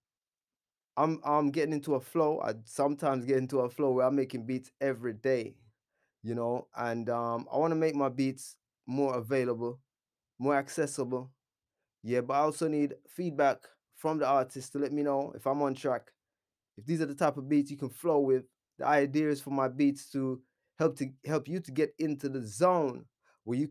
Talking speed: 195 wpm